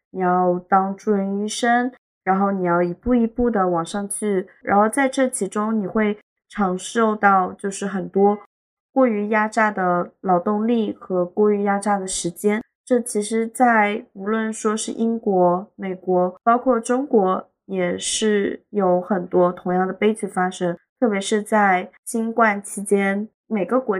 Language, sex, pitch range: Chinese, female, 190-220 Hz